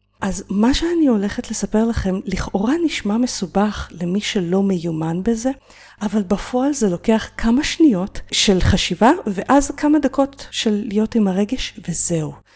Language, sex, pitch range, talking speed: Hebrew, female, 175-240 Hz, 140 wpm